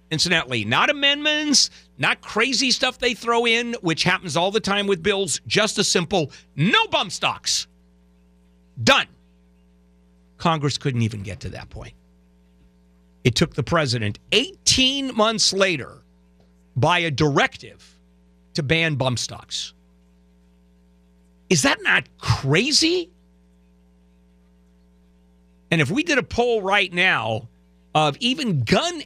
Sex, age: male, 50-69